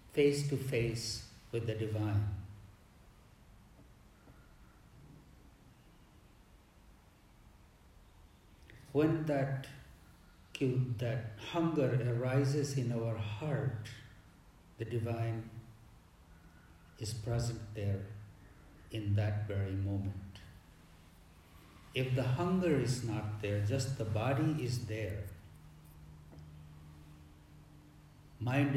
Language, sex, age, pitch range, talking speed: English, male, 50-69, 95-125 Hz, 70 wpm